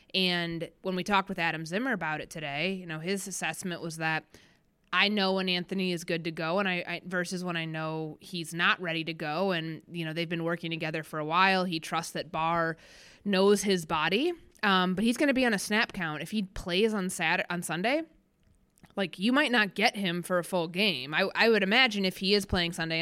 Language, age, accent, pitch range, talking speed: English, 20-39, American, 165-195 Hz, 230 wpm